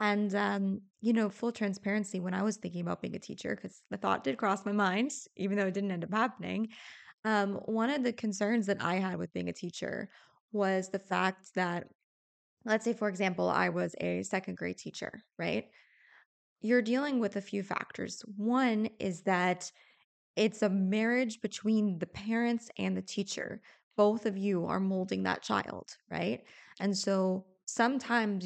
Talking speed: 175 wpm